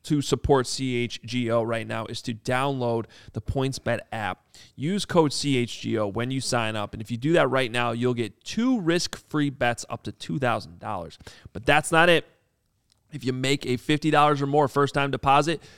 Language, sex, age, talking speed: English, male, 30-49, 200 wpm